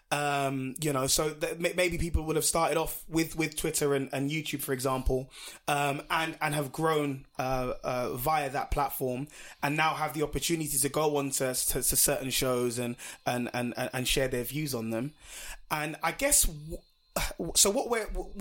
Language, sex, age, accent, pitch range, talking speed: English, male, 20-39, British, 135-165 Hz, 190 wpm